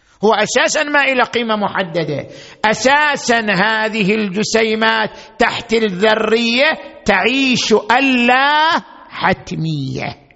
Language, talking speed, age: Arabic, 80 wpm, 50-69